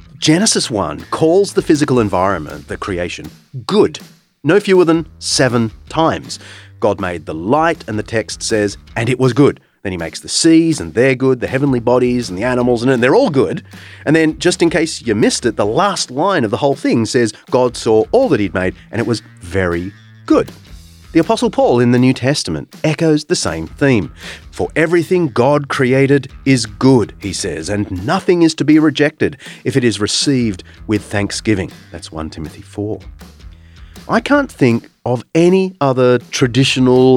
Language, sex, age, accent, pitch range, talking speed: English, male, 30-49, Australian, 100-155 Hz, 180 wpm